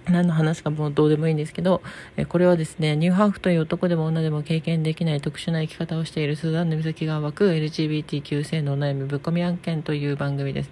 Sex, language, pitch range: female, Japanese, 150-185 Hz